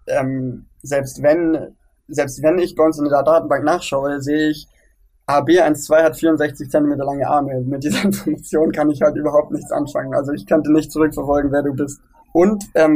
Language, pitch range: German, 140-160 Hz